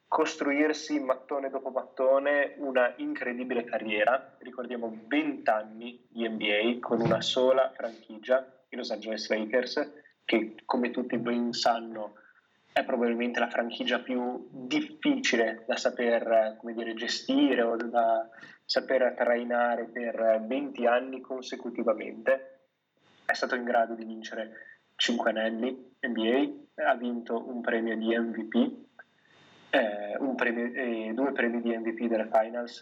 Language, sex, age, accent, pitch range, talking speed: Italian, male, 20-39, native, 115-130 Hz, 120 wpm